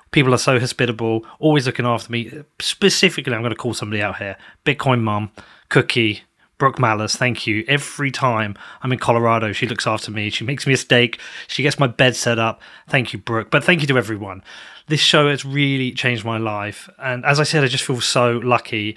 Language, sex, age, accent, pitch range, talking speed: English, male, 30-49, British, 115-150 Hz, 210 wpm